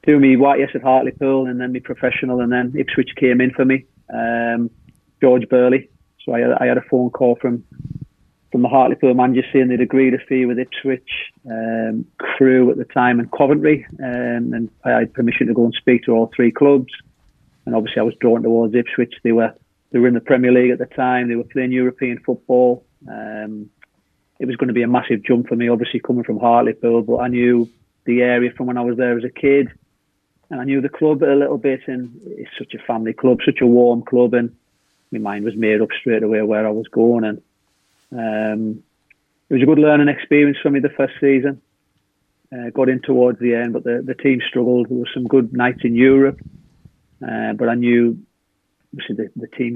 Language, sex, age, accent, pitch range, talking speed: English, male, 30-49, British, 120-130 Hz, 215 wpm